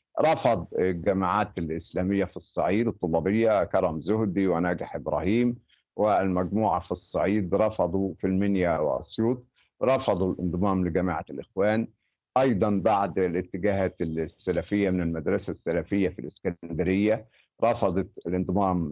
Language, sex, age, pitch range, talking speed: Arabic, male, 50-69, 90-115 Hz, 100 wpm